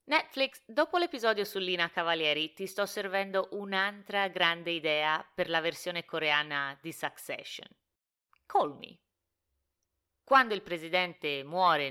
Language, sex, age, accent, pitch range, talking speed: Italian, female, 30-49, native, 155-220 Hz, 110 wpm